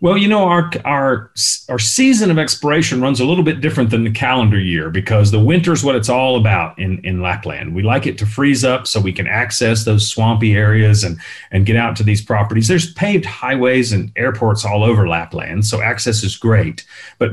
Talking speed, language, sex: 215 wpm, English, male